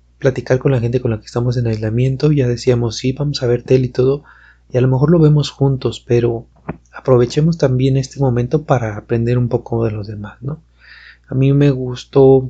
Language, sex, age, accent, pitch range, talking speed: Spanish, male, 30-49, Mexican, 120-145 Hz, 210 wpm